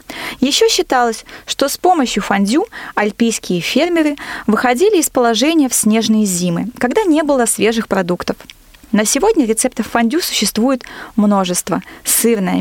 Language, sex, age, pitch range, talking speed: Russian, female, 20-39, 210-280 Hz, 125 wpm